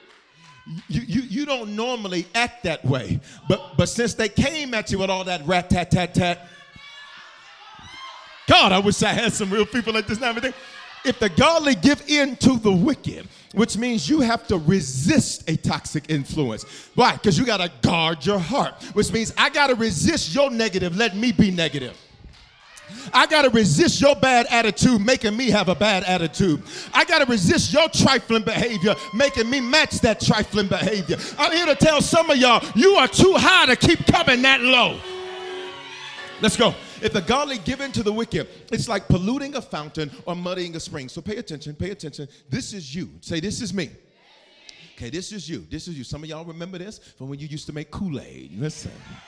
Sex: male